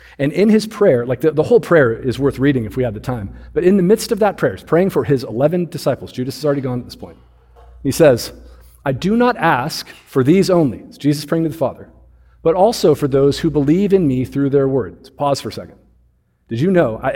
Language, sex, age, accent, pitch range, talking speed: English, male, 40-59, American, 115-170 Hz, 250 wpm